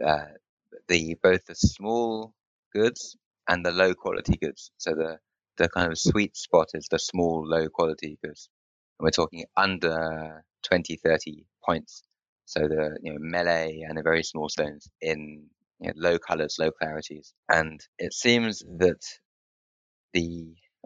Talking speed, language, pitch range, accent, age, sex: 150 wpm, English, 80-90 Hz, British, 20-39, male